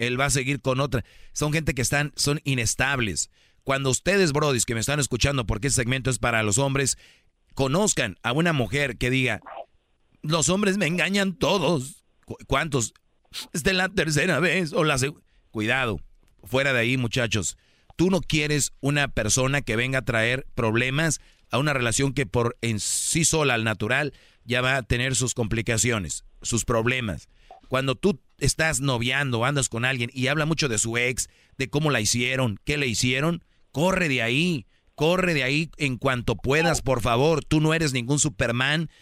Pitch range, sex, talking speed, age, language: 125-150 Hz, male, 175 wpm, 40-59, Spanish